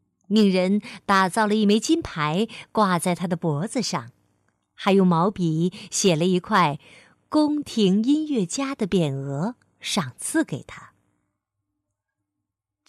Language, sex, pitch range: Chinese, female, 145-220 Hz